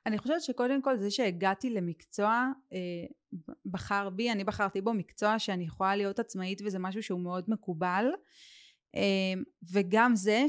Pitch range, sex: 195-250 Hz, female